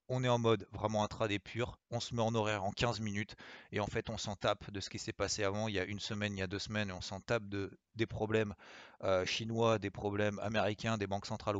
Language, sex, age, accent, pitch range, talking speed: French, male, 30-49, French, 100-120 Hz, 270 wpm